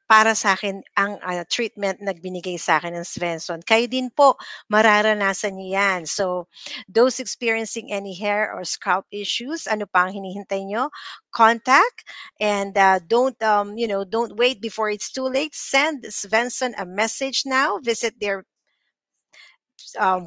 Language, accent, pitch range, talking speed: English, Filipino, 205-255 Hz, 145 wpm